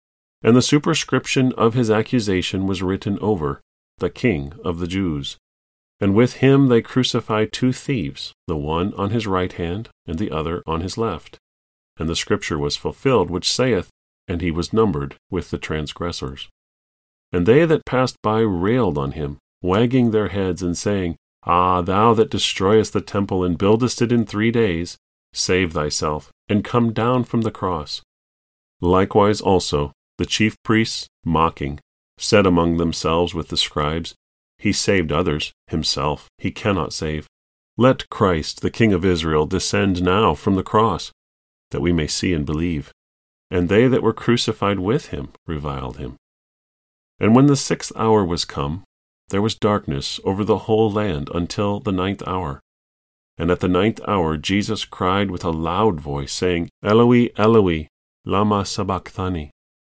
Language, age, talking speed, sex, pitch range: English, 40-59, 160 wpm, male, 75-110 Hz